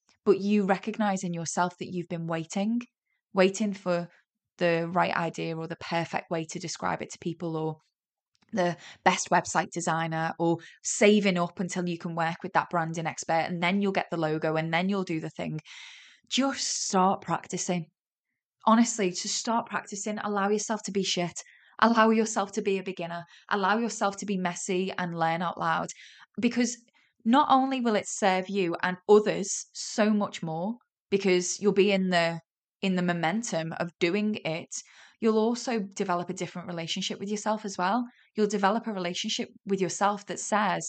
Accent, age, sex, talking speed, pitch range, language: British, 20-39, female, 175 wpm, 175-210 Hz, English